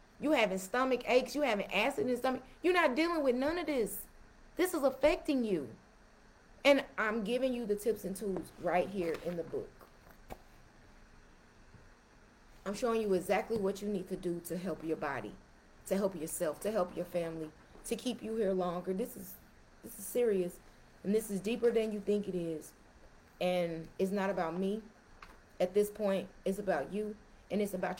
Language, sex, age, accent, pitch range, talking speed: English, female, 30-49, American, 190-255 Hz, 185 wpm